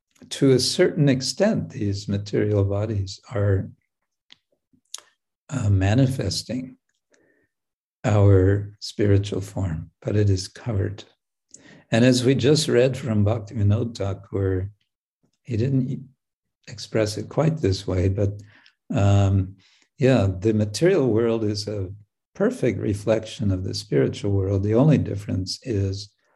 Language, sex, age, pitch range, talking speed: English, male, 60-79, 100-120 Hz, 115 wpm